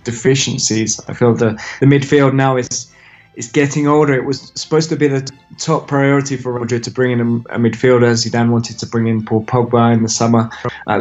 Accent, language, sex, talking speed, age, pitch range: British, English, male, 220 wpm, 20-39, 120-140 Hz